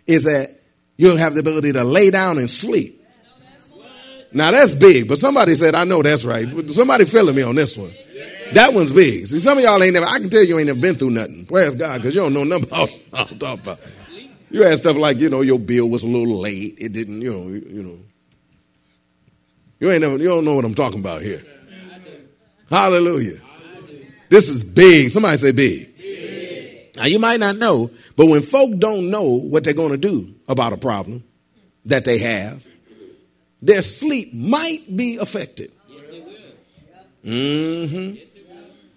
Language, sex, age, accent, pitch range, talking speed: English, male, 40-59, American, 125-205 Hz, 180 wpm